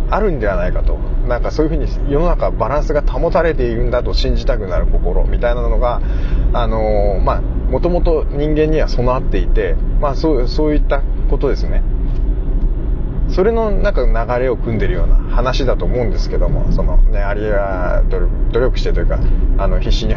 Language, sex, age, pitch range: Japanese, male, 20-39, 105-140 Hz